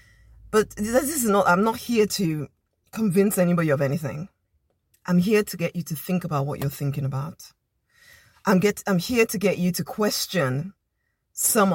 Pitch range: 150-215 Hz